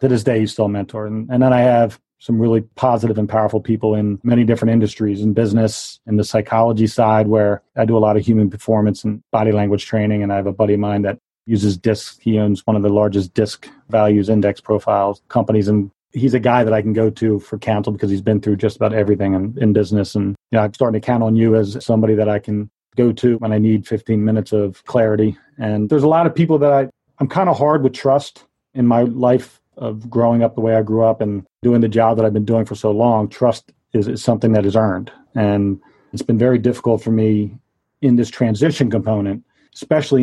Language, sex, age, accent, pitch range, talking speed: English, male, 40-59, American, 105-120 Hz, 235 wpm